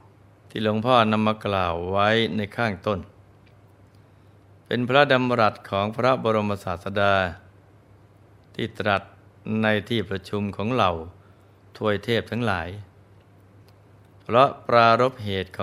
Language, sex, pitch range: Thai, male, 100-110 Hz